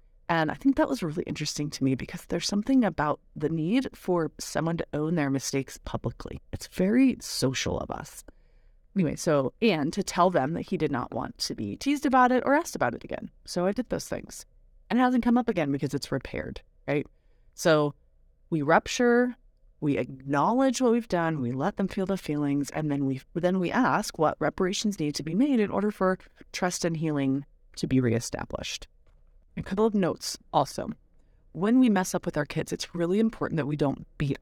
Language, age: English, 30-49